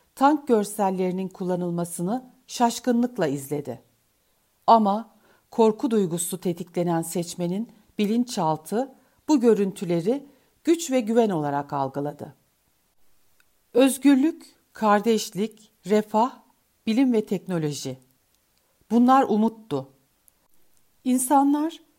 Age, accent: 60-79, native